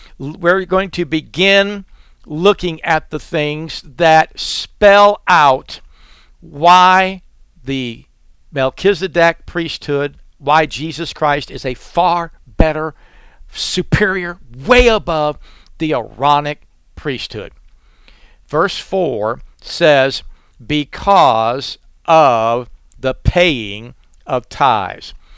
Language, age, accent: English, 60-79, American